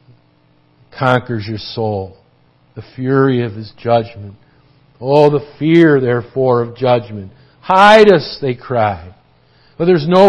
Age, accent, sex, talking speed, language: 50-69, American, male, 120 wpm, English